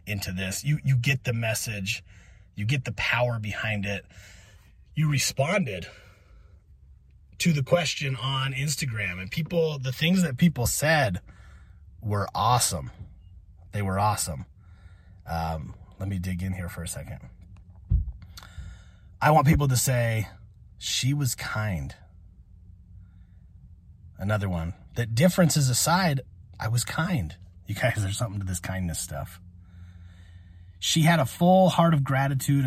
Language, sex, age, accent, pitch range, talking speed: English, male, 30-49, American, 90-130 Hz, 130 wpm